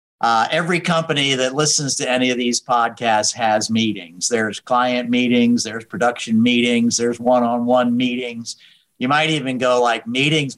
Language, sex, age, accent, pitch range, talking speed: English, male, 50-69, American, 115-145 Hz, 155 wpm